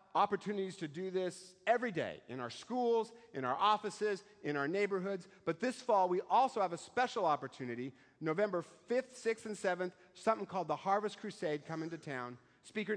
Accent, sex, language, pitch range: American, male, English, 150-195 Hz